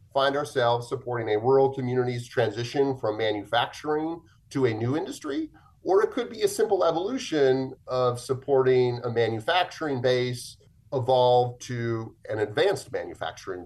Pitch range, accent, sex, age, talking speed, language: 105-130 Hz, American, male, 30-49, 130 wpm, English